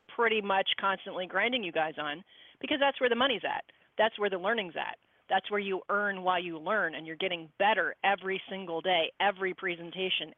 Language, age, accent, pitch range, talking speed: English, 40-59, American, 175-220 Hz, 195 wpm